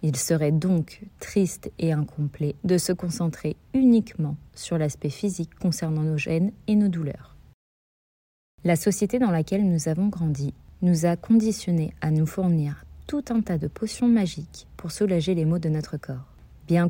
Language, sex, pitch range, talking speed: French, female, 155-195 Hz, 165 wpm